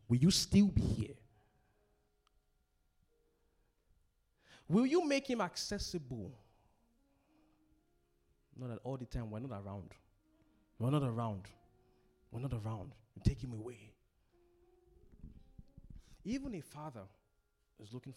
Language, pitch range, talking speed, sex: English, 100-140 Hz, 120 wpm, male